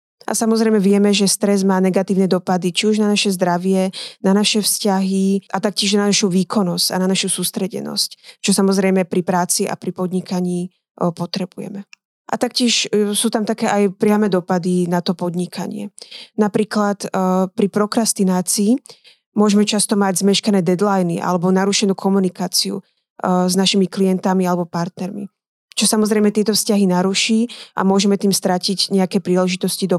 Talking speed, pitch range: 145 wpm, 185-210 Hz